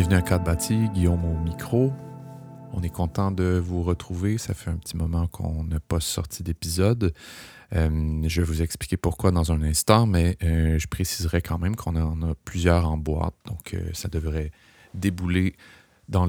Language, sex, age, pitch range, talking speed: French, male, 30-49, 85-100 Hz, 185 wpm